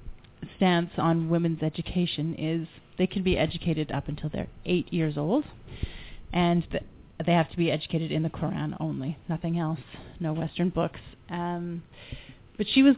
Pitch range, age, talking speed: 155-180 Hz, 30-49, 160 wpm